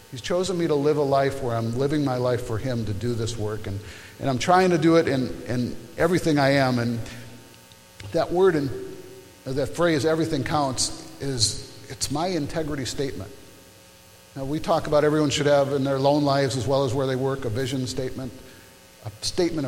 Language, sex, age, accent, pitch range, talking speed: English, male, 50-69, American, 110-150 Hz, 200 wpm